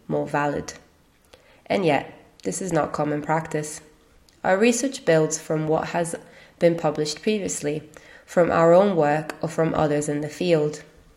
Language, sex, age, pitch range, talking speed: English, female, 20-39, 150-170 Hz, 150 wpm